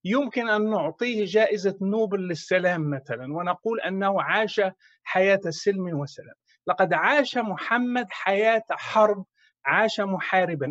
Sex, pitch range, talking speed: male, 190-265 Hz, 110 wpm